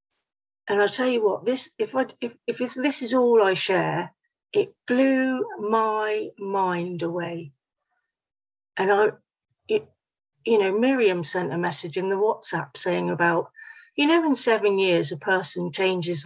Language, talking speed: English, 145 wpm